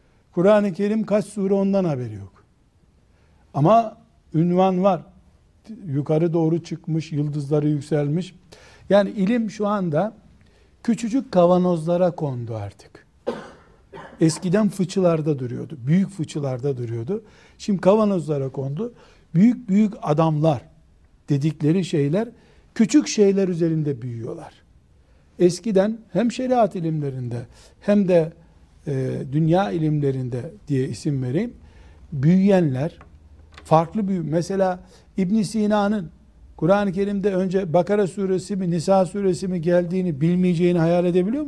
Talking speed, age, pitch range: 105 wpm, 60-79, 150-200 Hz